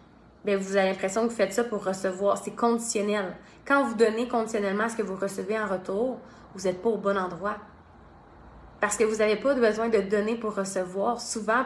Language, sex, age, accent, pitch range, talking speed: French, female, 20-39, Canadian, 185-215 Hz, 195 wpm